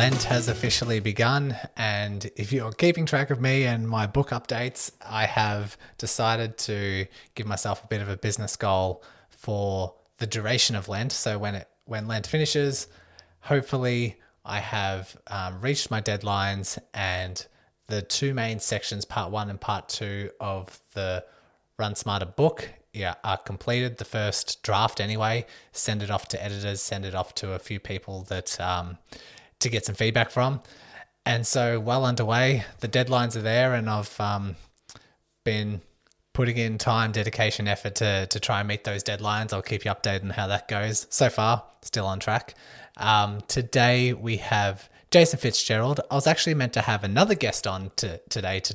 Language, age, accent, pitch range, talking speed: English, 20-39, Australian, 100-120 Hz, 175 wpm